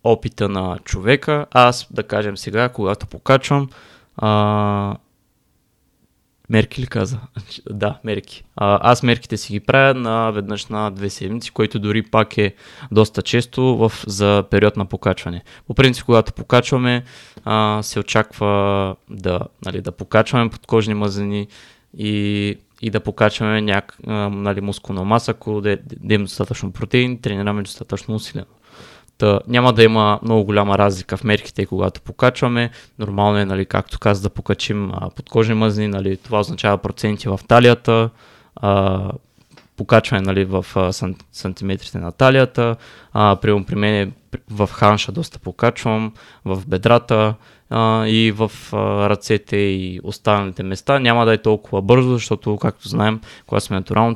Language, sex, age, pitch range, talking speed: Bulgarian, male, 20-39, 100-115 Hz, 130 wpm